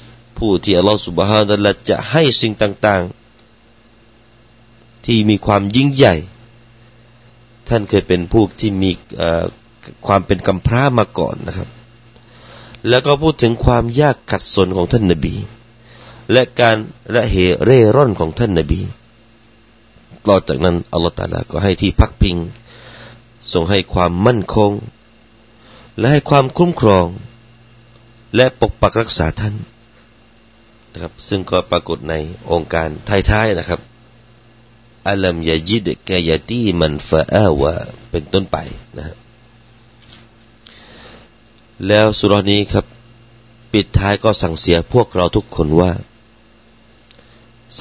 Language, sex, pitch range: Thai, male, 95-120 Hz